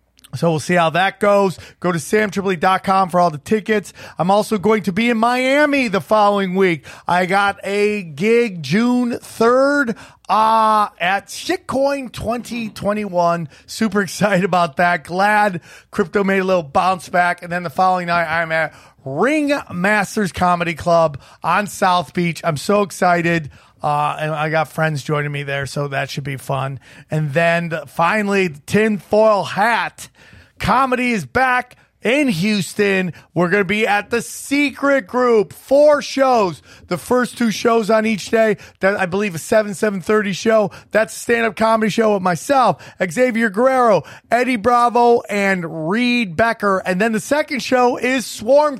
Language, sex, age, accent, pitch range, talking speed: English, male, 30-49, American, 170-230 Hz, 155 wpm